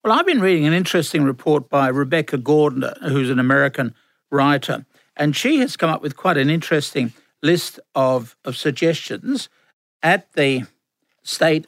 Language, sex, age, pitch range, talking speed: English, male, 60-79, 140-165 Hz, 155 wpm